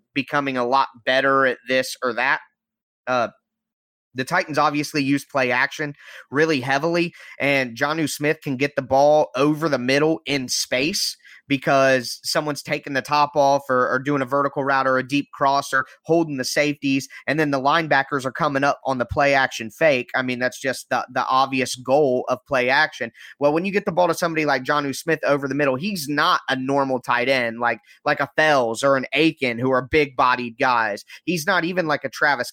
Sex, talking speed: male, 205 wpm